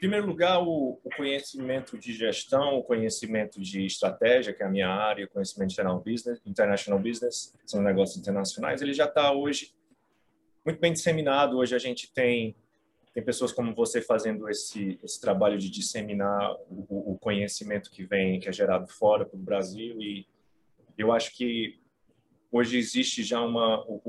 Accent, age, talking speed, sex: Brazilian, 30-49, 165 wpm, male